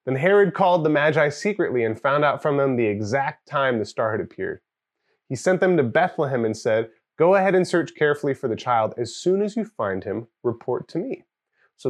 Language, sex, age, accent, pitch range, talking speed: English, male, 30-49, American, 120-185 Hz, 215 wpm